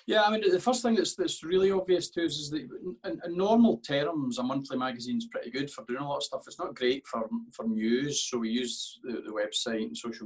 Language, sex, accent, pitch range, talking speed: English, male, British, 110-175 Hz, 250 wpm